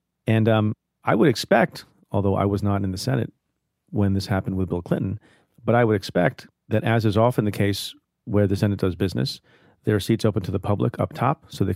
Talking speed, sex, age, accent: 225 wpm, male, 40-59, American